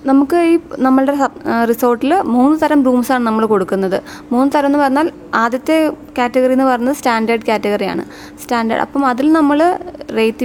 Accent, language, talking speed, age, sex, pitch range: native, Malayalam, 140 wpm, 20-39, female, 225-270 Hz